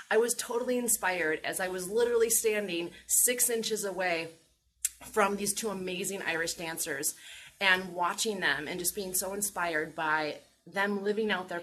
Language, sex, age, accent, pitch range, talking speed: English, female, 30-49, American, 175-220 Hz, 160 wpm